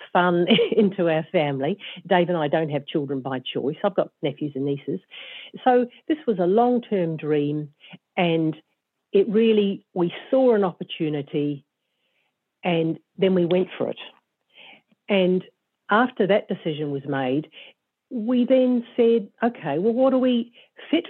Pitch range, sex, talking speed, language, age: 155-215 Hz, female, 145 wpm, English, 50-69